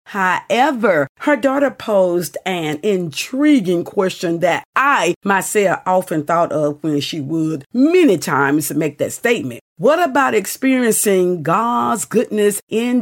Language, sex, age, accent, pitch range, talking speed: English, female, 50-69, American, 160-235 Hz, 125 wpm